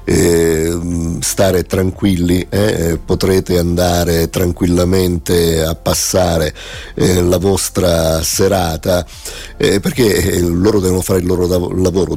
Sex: male